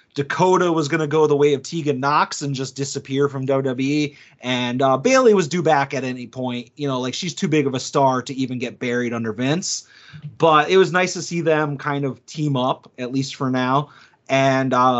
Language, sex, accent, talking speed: English, male, American, 220 wpm